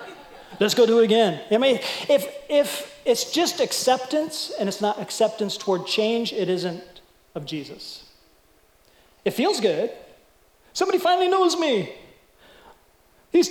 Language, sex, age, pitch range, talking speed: English, male, 40-59, 180-245 Hz, 135 wpm